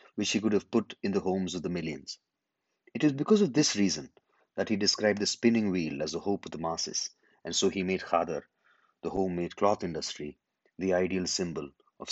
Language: English